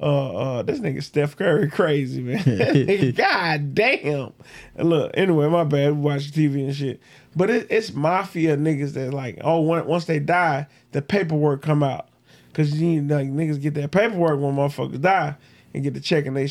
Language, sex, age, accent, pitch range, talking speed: English, male, 20-39, American, 135-160 Hz, 195 wpm